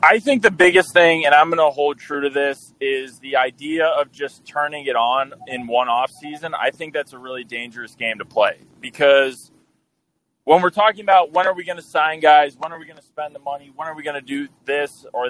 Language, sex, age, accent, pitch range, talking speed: English, male, 20-39, American, 140-165 Hz, 245 wpm